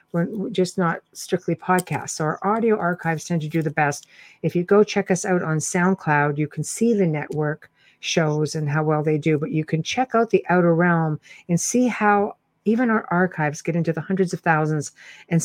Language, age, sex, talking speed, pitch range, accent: English, 50-69, female, 205 wpm, 155-190 Hz, American